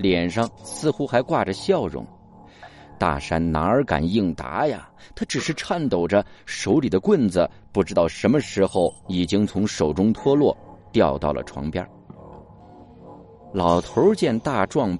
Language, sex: Chinese, male